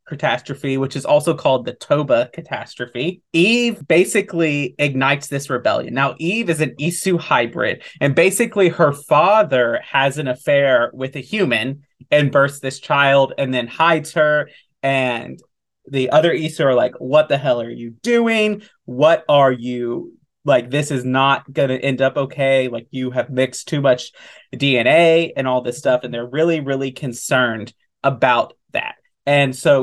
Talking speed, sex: 160 wpm, male